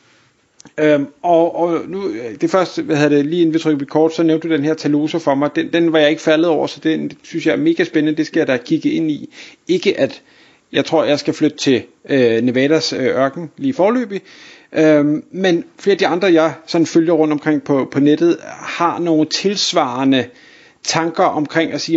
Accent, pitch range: native, 150-180 Hz